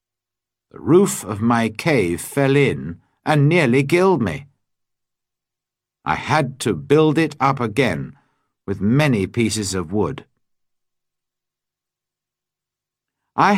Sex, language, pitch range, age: male, Chinese, 110-145 Hz, 60-79